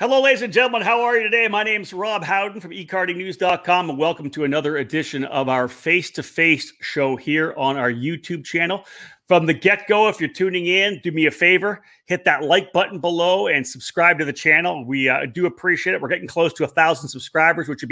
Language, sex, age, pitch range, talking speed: English, male, 40-59, 145-185 Hz, 220 wpm